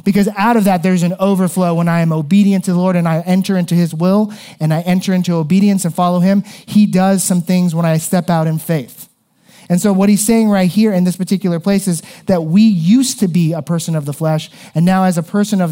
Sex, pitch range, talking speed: male, 170-195 Hz, 250 wpm